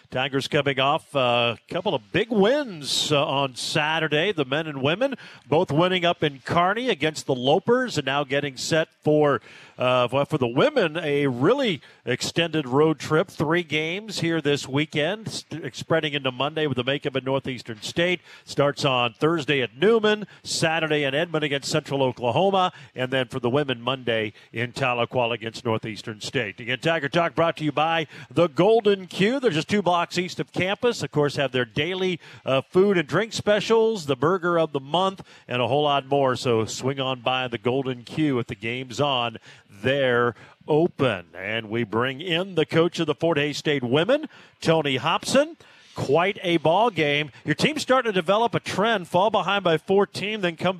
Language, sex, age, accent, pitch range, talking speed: English, male, 50-69, American, 135-175 Hz, 185 wpm